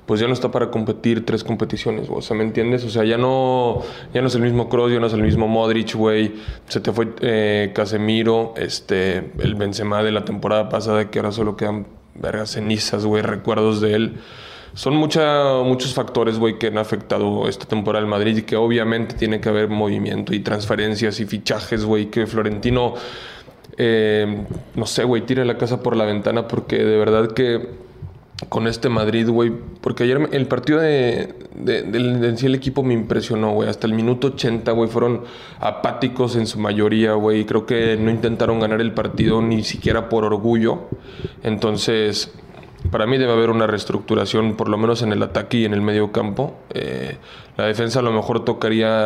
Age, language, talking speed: 20-39, English, 190 wpm